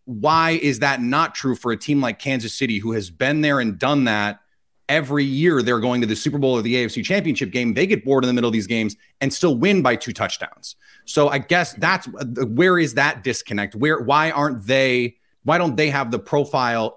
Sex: male